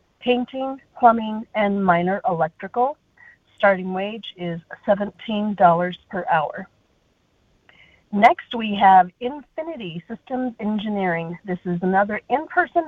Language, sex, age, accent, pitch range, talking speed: English, female, 40-59, American, 185-245 Hz, 100 wpm